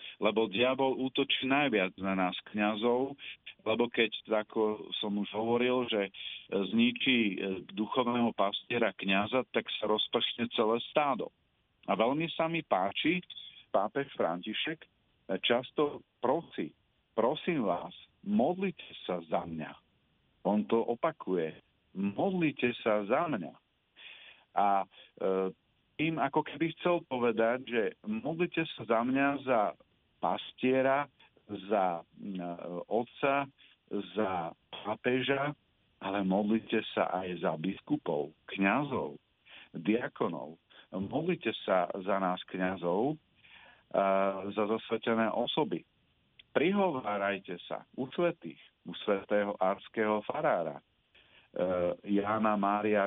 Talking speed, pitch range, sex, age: 105 wpm, 100-130 Hz, male, 50-69